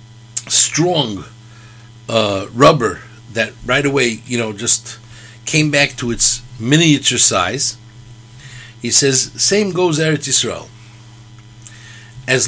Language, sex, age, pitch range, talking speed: English, male, 60-79, 115-145 Hz, 105 wpm